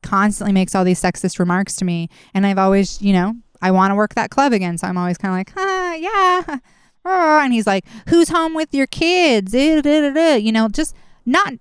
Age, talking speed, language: 20-39, 205 wpm, English